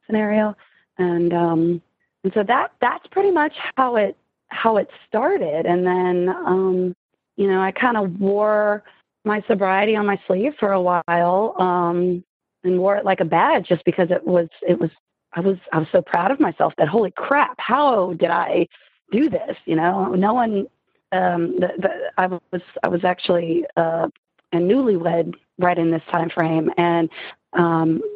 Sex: female